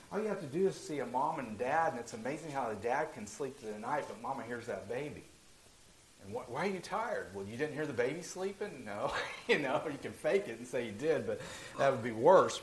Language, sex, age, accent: English, male, 50-69, American